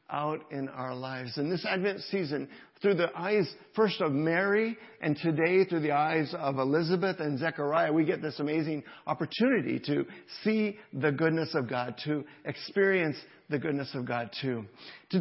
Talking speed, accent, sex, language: 165 wpm, American, male, English